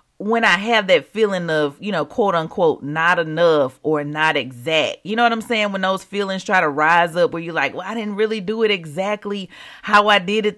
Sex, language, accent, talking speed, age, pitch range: female, English, American, 235 wpm, 30-49, 175-235 Hz